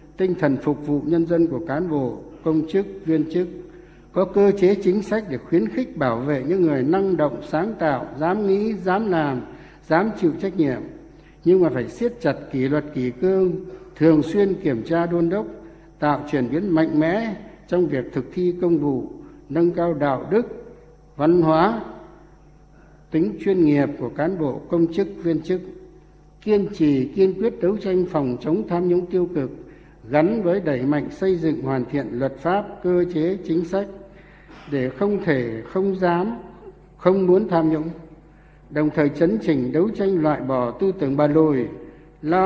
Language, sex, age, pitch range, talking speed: Vietnamese, male, 60-79, 150-185 Hz, 180 wpm